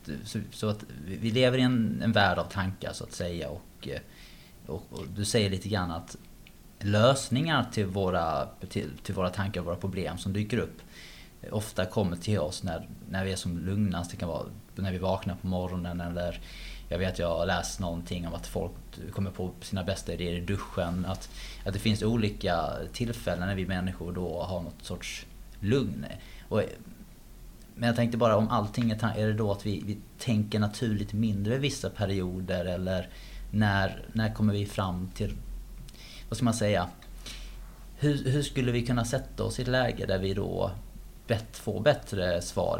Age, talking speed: 20-39, 185 wpm